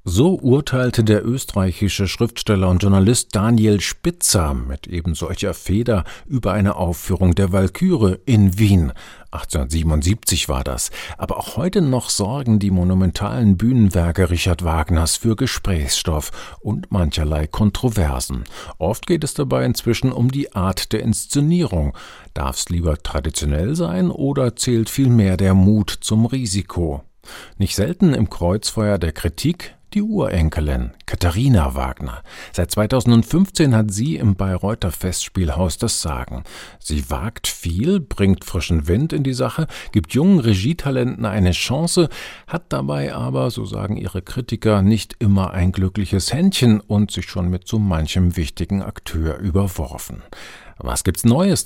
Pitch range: 85-115 Hz